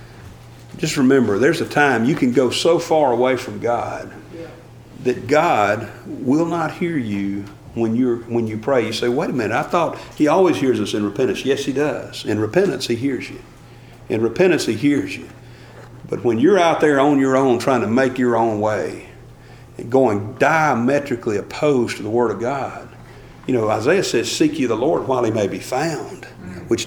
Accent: American